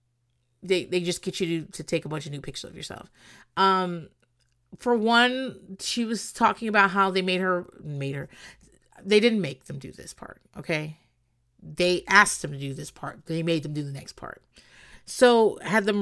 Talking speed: 200 wpm